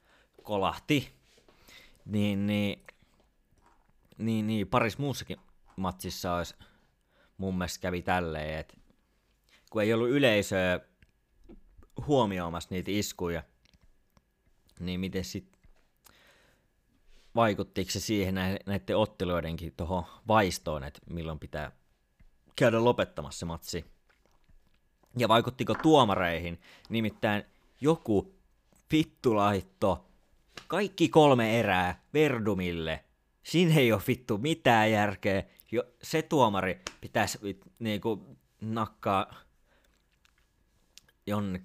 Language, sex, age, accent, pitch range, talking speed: Finnish, male, 30-49, native, 85-115 Hz, 90 wpm